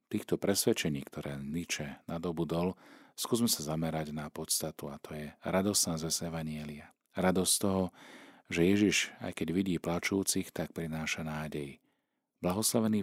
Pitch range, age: 80-95 Hz, 40-59